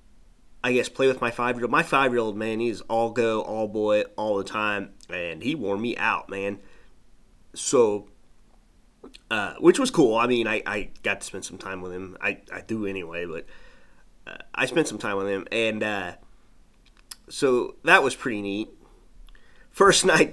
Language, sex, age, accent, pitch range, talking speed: English, male, 30-49, American, 100-125 Hz, 170 wpm